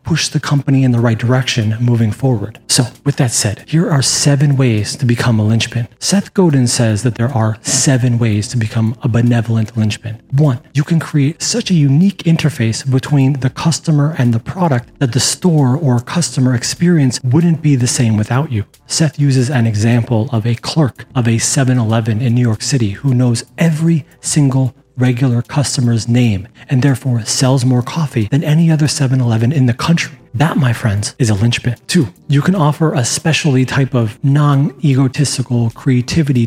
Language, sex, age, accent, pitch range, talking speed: English, male, 30-49, American, 120-145 Hz, 180 wpm